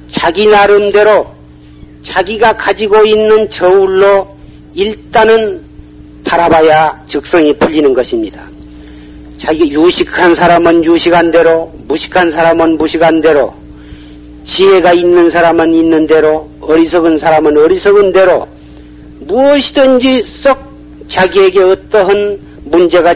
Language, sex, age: Korean, male, 40-59